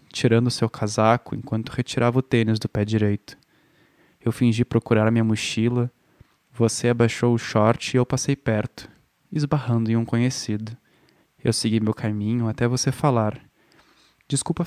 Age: 10-29